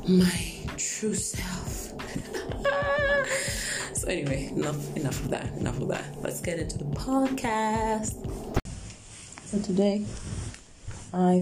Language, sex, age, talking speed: English, female, 20-39, 110 wpm